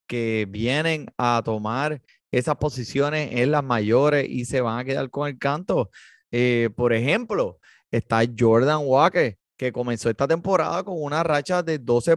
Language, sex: Spanish, male